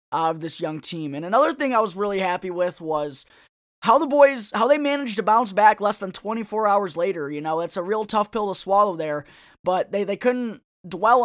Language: English